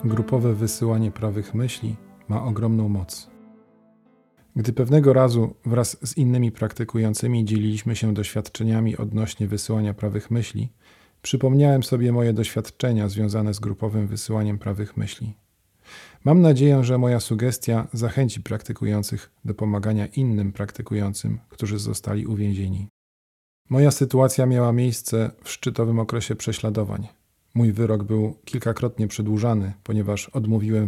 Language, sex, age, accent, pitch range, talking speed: Polish, male, 40-59, native, 105-120 Hz, 115 wpm